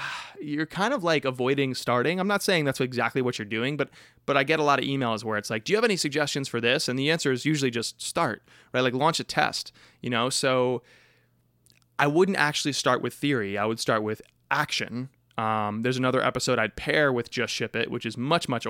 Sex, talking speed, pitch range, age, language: male, 235 wpm, 110-140 Hz, 20-39, English